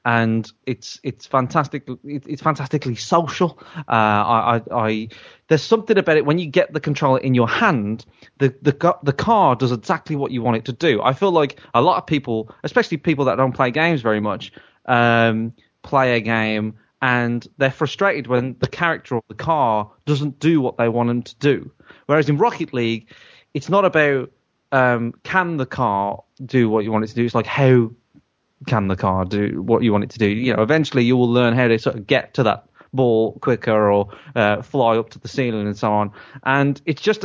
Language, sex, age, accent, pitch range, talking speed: English, male, 30-49, British, 110-140 Hz, 210 wpm